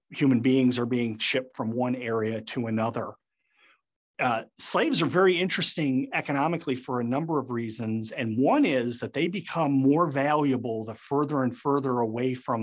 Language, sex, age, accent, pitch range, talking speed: English, male, 40-59, American, 120-140 Hz, 165 wpm